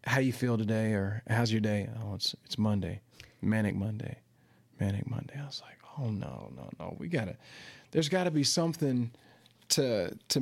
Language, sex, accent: English, male, American